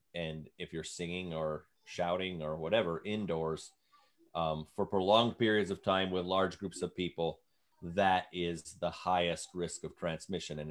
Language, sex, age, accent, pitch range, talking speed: English, male, 30-49, American, 80-100 Hz, 155 wpm